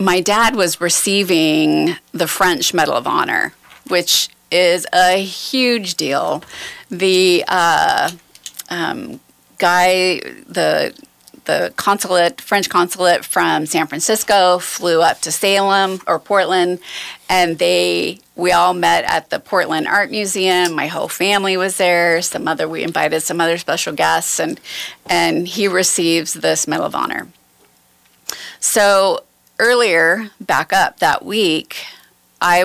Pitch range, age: 165-195 Hz, 30-49